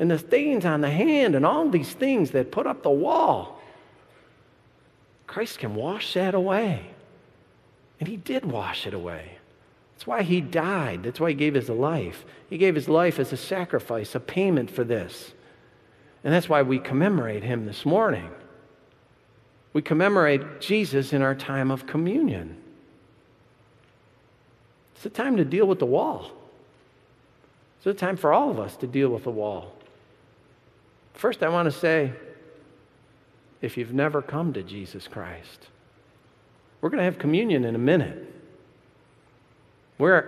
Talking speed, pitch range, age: 155 wpm, 120-165 Hz, 50-69